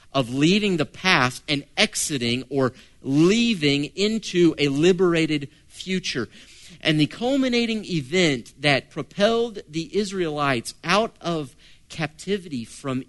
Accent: American